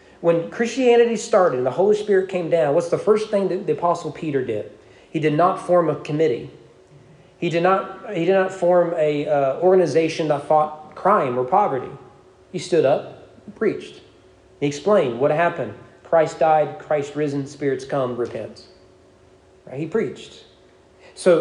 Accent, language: American, English